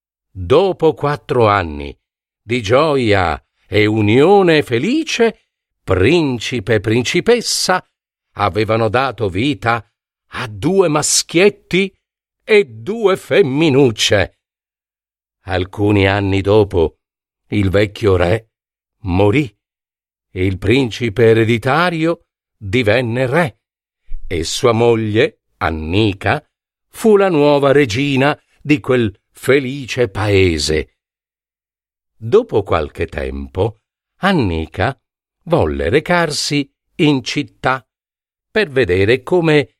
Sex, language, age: male, Italian, 50-69